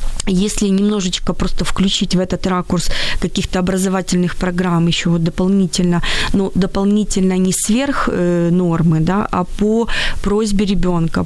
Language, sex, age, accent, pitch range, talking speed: Ukrainian, female, 20-39, native, 175-205 Hz, 125 wpm